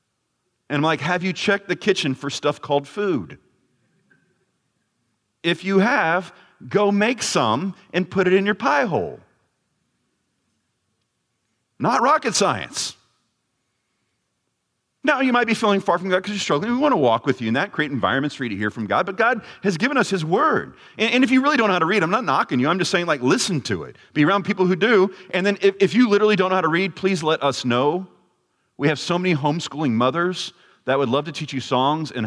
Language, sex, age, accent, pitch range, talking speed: English, male, 40-59, American, 150-215 Hz, 220 wpm